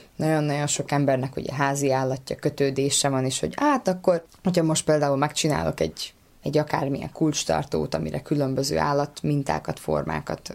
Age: 20-39